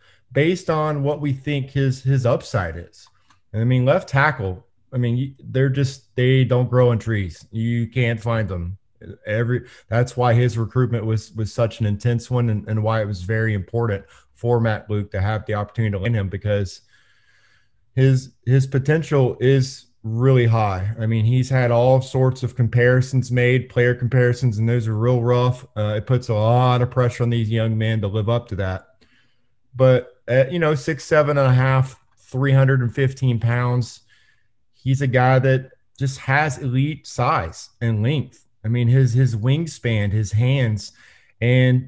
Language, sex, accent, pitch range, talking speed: English, male, American, 110-130 Hz, 180 wpm